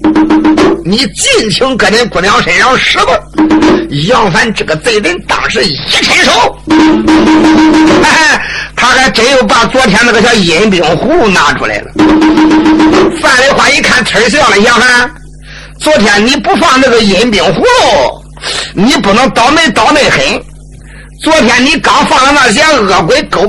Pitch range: 230-320 Hz